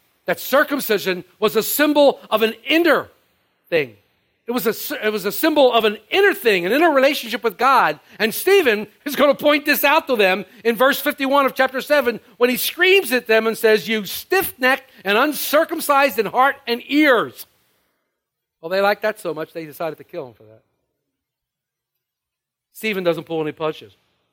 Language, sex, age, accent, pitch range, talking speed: English, male, 50-69, American, 190-270 Hz, 180 wpm